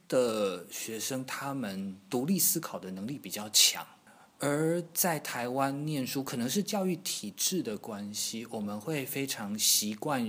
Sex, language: male, Chinese